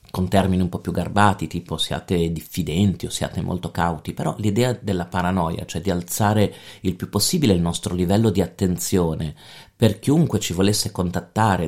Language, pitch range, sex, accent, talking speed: Italian, 90-105 Hz, male, native, 170 wpm